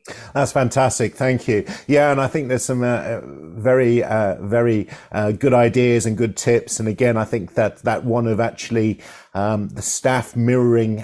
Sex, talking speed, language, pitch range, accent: male, 180 wpm, English, 115-145 Hz, British